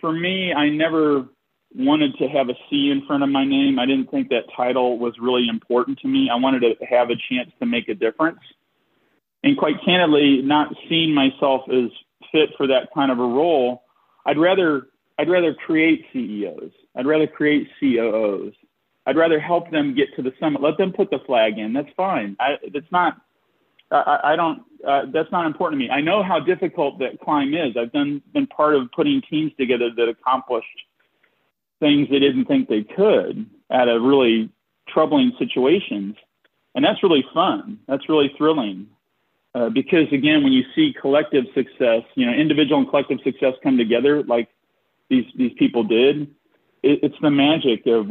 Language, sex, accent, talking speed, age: English, male, American, 185 wpm, 40-59